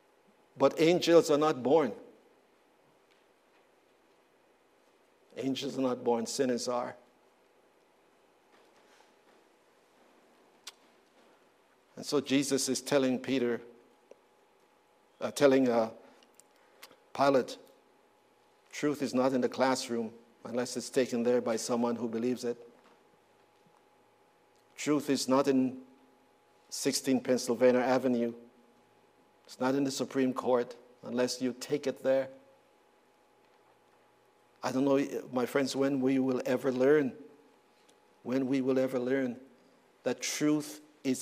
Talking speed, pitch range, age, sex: 105 wpm, 125-150 Hz, 50-69, male